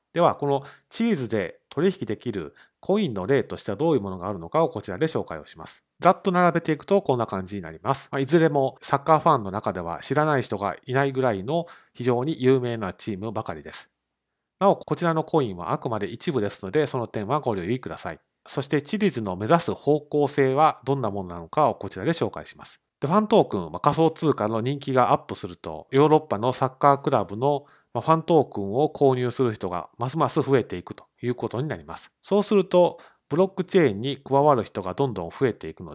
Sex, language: male, Japanese